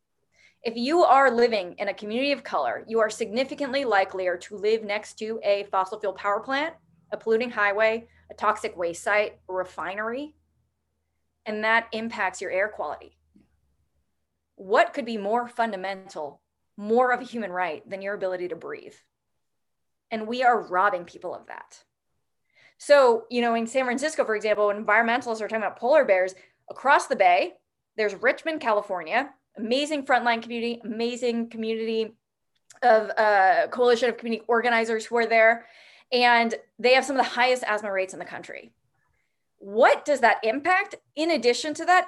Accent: American